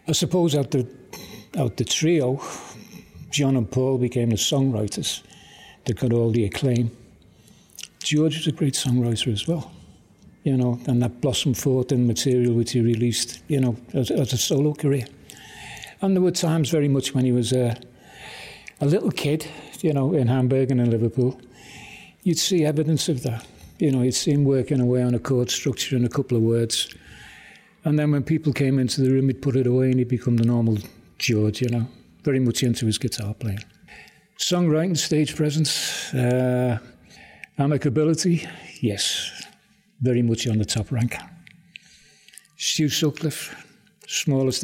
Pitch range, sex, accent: 120-150 Hz, male, British